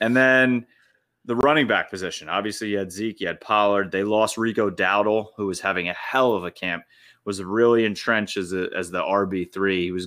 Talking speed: 210 wpm